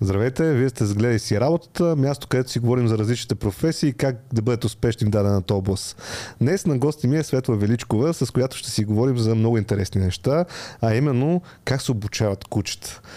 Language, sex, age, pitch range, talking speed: Bulgarian, male, 30-49, 110-140 Hz, 195 wpm